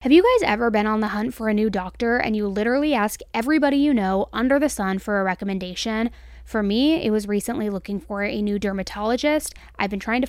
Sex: female